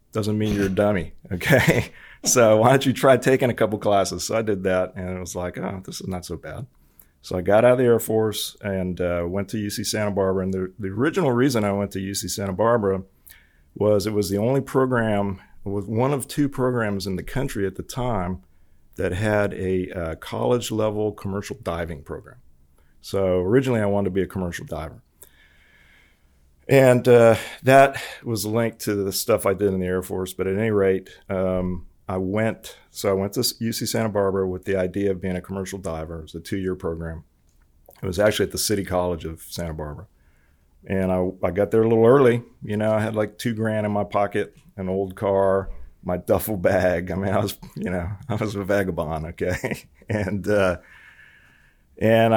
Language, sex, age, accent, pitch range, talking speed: English, male, 40-59, American, 90-110 Hz, 205 wpm